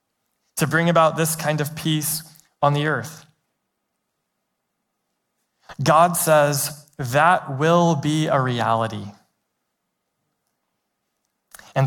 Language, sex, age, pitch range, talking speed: English, male, 20-39, 135-170 Hz, 90 wpm